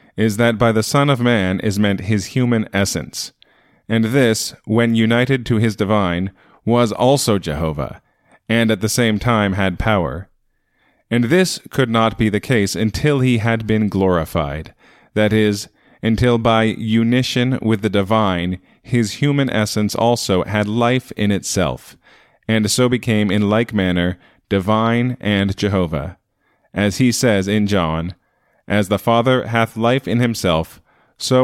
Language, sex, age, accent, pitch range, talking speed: English, male, 30-49, American, 95-115 Hz, 150 wpm